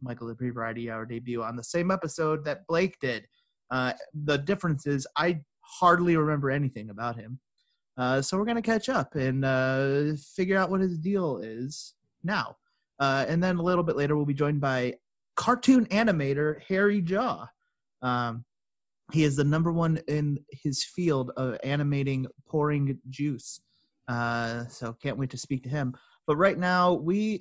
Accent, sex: American, male